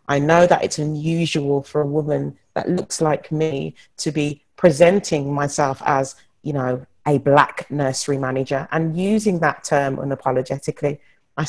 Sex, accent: female, British